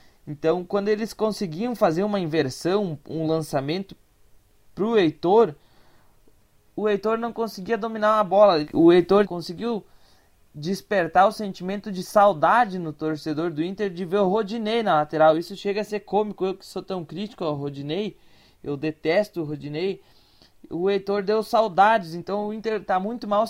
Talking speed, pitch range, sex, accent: 160 wpm, 155-210 Hz, male, Brazilian